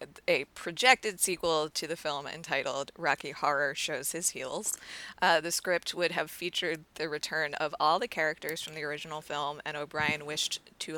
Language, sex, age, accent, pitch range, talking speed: English, female, 20-39, American, 150-180 Hz, 175 wpm